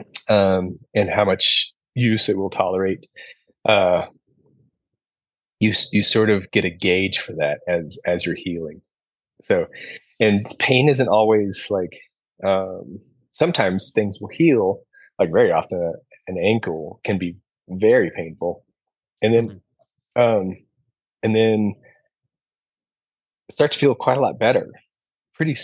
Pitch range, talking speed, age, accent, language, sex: 100-125 Hz, 130 wpm, 30-49, American, English, male